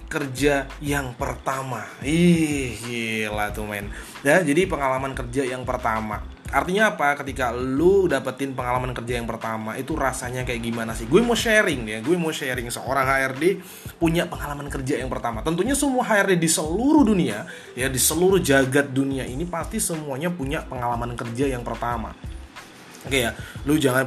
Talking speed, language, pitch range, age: 160 wpm, Indonesian, 110-140 Hz, 20-39